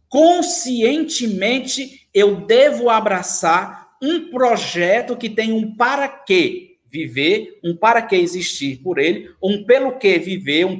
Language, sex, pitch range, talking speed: Portuguese, male, 185-250 Hz, 130 wpm